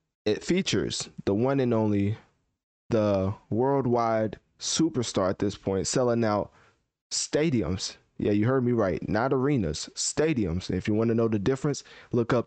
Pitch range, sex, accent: 105-125 Hz, male, American